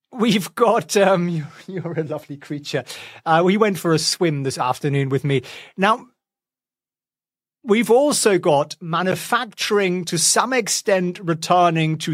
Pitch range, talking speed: 145-190 Hz, 135 wpm